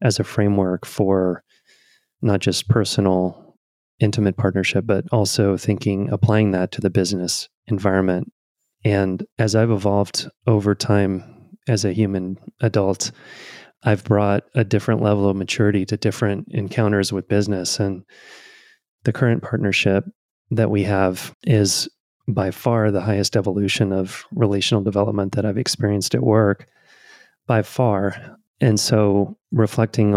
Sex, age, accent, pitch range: male, 30-49, American, 100-115 Hz